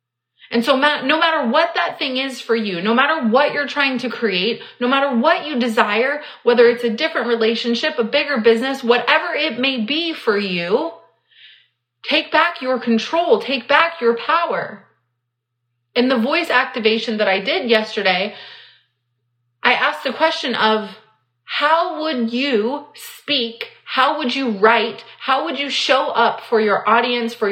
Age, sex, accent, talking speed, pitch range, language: 30-49, female, American, 160 wpm, 220-275 Hz, English